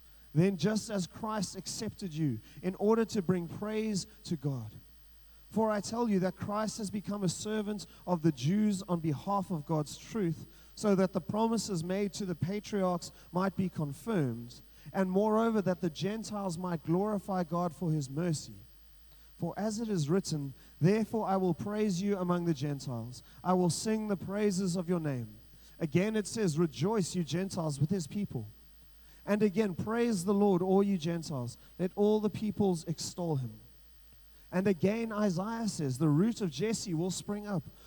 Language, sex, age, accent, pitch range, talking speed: English, male, 30-49, Australian, 140-200 Hz, 170 wpm